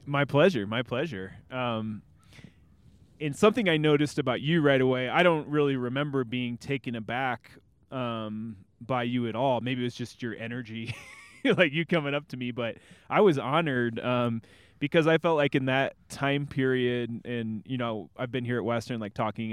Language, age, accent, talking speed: English, 20-39, American, 185 wpm